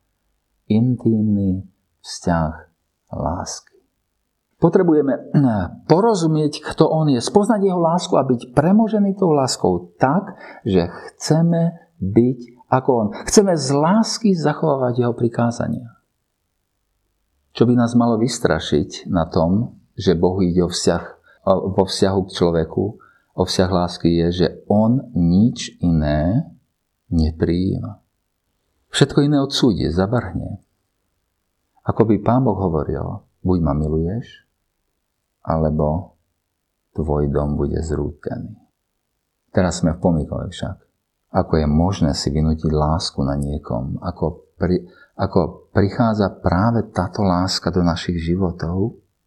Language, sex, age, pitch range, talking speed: Slovak, male, 50-69, 85-120 Hz, 110 wpm